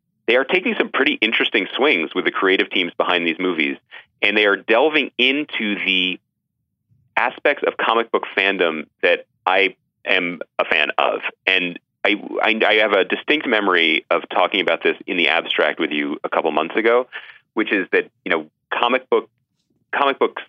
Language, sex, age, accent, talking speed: English, male, 30-49, American, 175 wpm